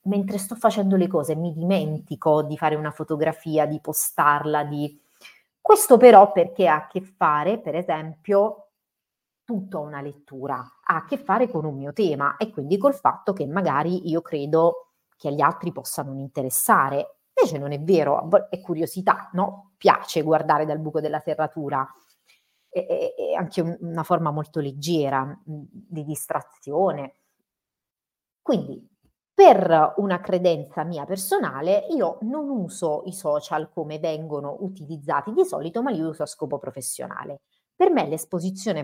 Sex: female